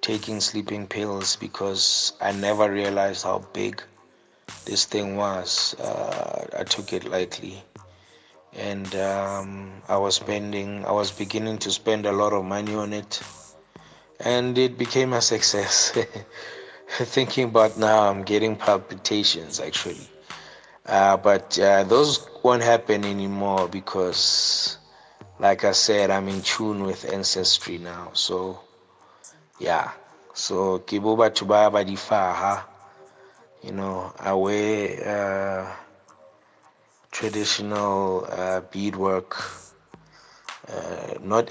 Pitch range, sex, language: 95-110 Hz, male, English